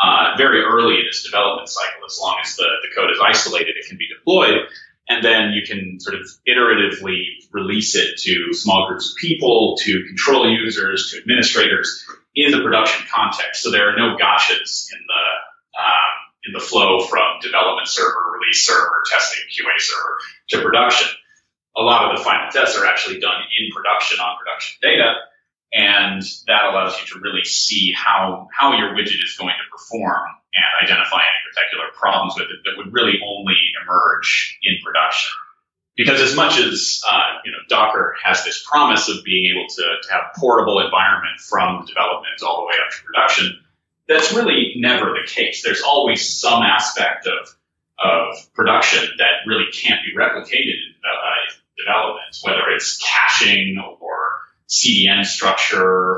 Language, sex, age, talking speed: English, male, 30-49, 170 wpm